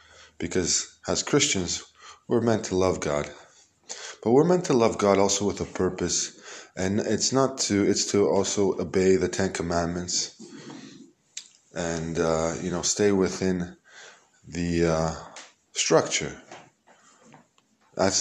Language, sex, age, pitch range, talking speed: Hebrew, male, 20-39, 85-100 Hz, 130 wpm